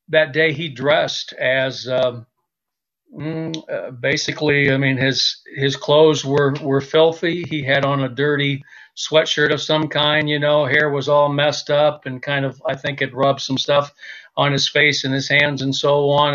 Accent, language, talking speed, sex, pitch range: American, English, 180 wpm, male, 135-155 Hz